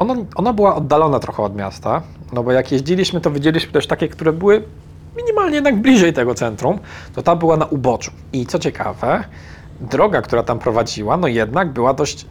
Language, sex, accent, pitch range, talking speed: Polish, male, native, 110-160 Hz, 185 wpm